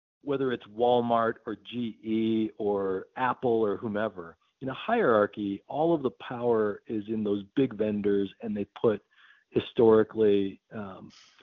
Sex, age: male, 50-69